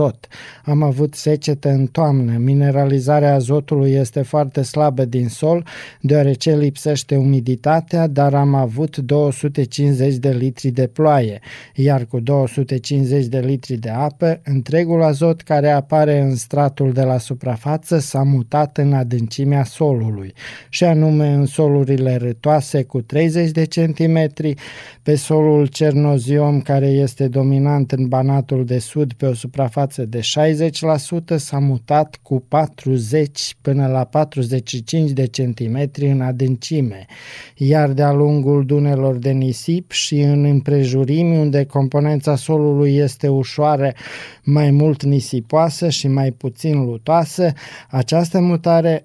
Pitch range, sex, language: 135-150 Hz, male, Romanian